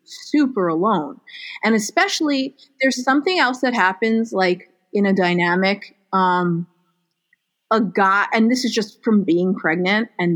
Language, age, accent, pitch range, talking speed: English, 30-49, American, 185-250 Hz, 140 wpm